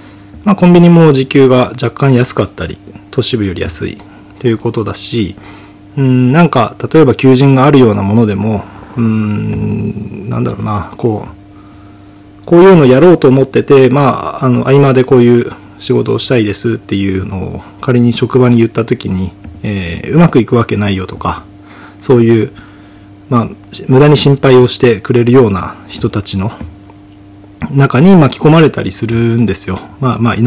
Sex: male